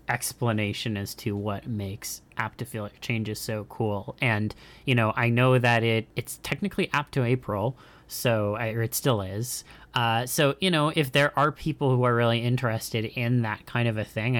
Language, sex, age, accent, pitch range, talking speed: English, male, 30-49, American, 110-130 Hz, 190 wpm